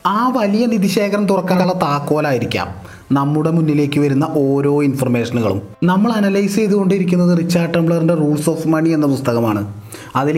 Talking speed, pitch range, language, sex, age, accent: 120 wpm, 155-195 Hz, Malayalam, male, 30-49, native